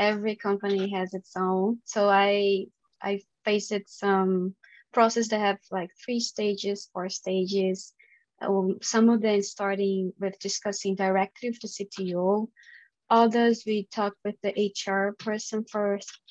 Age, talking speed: 20-39, 135 wpm